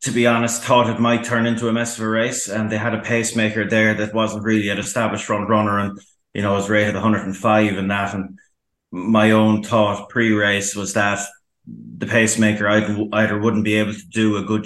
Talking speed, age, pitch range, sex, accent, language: 210 wpm, 20-39, 100-110 Hz, male, Irish, English